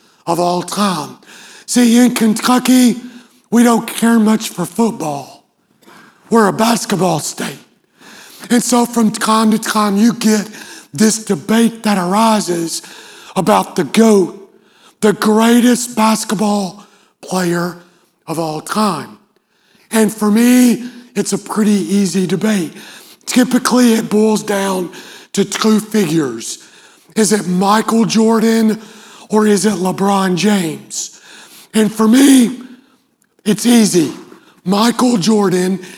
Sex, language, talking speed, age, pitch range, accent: male, English, 115 wpm, 40-59, 190-225 Hz, American